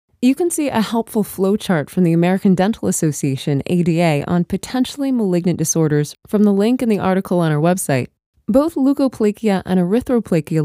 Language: English